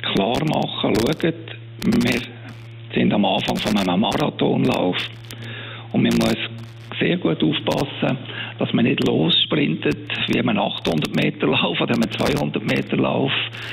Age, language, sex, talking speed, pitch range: 60-79, German, male, 115 wpm, 115-120 Hz